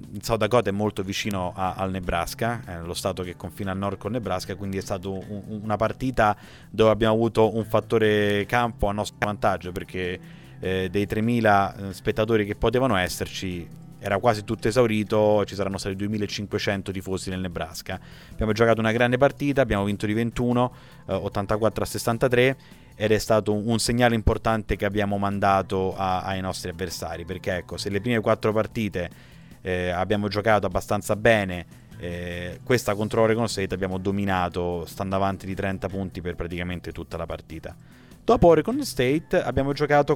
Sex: male